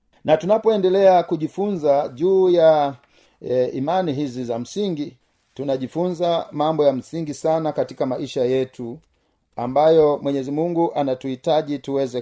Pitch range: 140-185 Hz